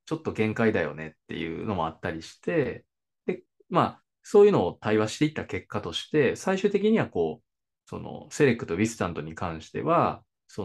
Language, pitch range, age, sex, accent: Japanese, 100-155 Hz, 20-39, male, native